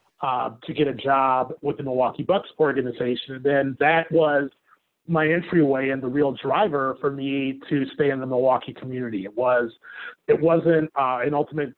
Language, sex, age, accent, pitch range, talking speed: English, male, 30-49, American, 135-160 Hz, 180 wpm